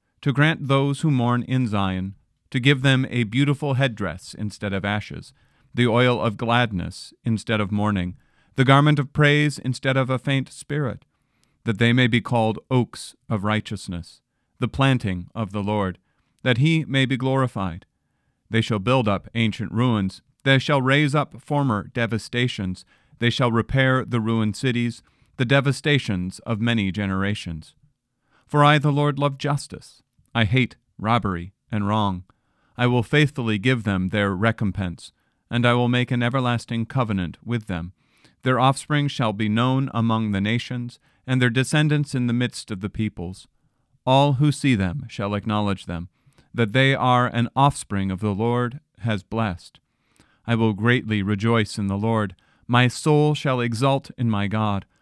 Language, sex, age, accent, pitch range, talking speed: English, male, 40-59, American, 105-135 Hz, 160 wpm